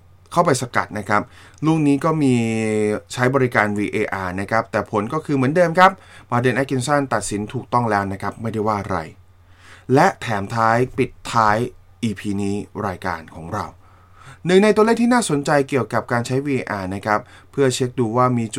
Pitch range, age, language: 100-140 Hz, 20-39, Thai